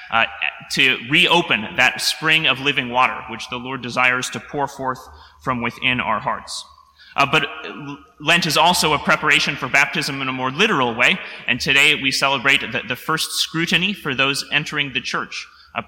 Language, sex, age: English, male, 30-49